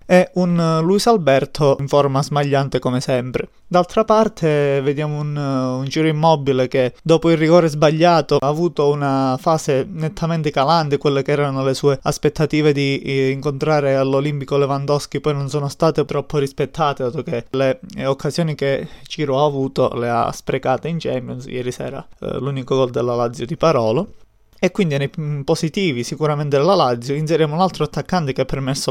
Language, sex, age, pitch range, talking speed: Italian, male, 20-39, 135-165 Hz, 160 wpm